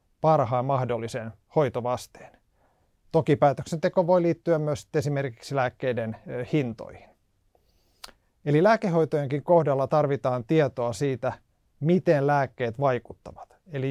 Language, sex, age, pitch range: Finnish, male, 30-49, 125-155 Hz